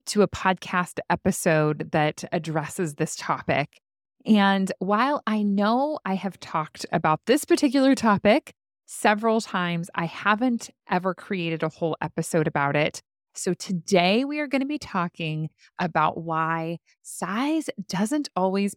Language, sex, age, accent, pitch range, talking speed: English, female, 20-39, American, 160-225 Hz, 140 wpm